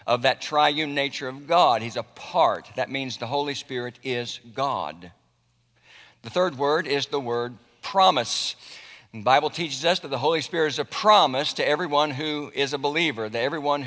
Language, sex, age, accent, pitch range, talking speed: English, male, 60-79, American, 130-165 Hz, 180 wpm